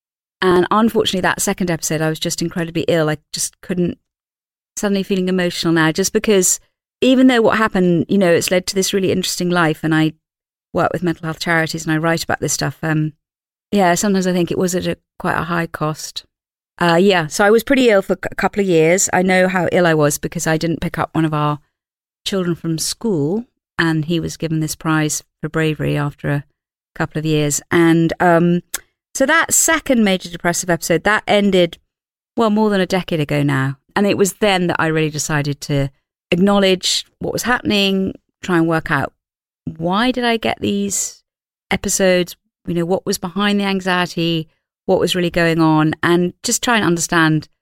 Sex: female